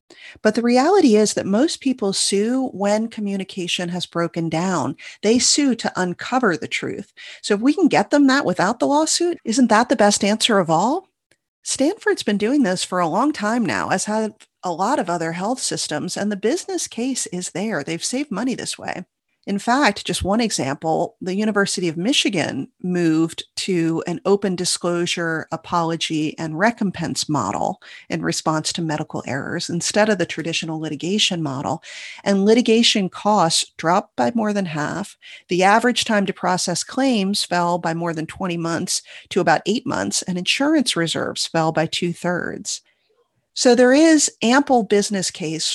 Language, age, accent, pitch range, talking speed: English, 40-59, American, 165-220 Hz, 170 wpm